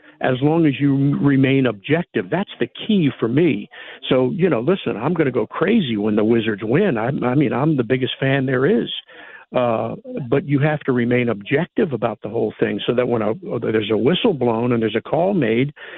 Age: 50-69